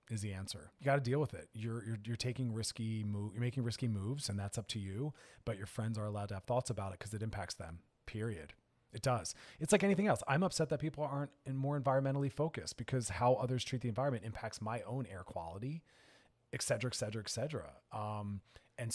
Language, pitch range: English, 105-130 Hz